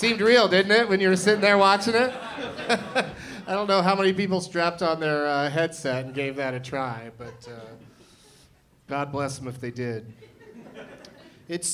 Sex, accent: male, American